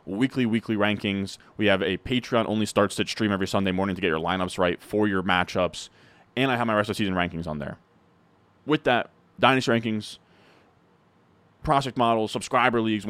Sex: male